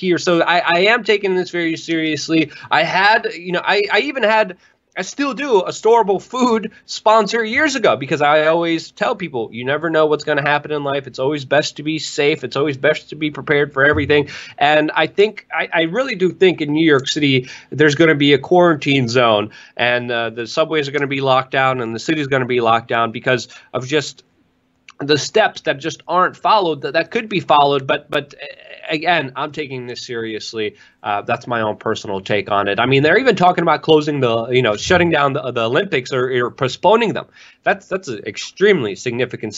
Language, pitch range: English, 125-165 Hz